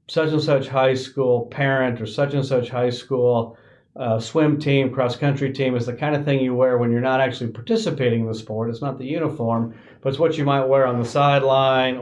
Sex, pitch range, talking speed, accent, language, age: male, 120-140 Hz, 205 wpm, American, English, 40-59